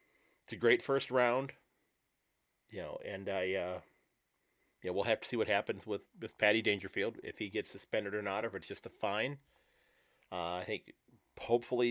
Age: 40-59